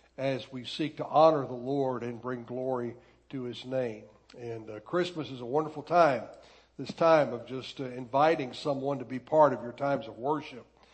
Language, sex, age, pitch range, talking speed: English, male, 60-79, 120-155 Hz, 190 wpm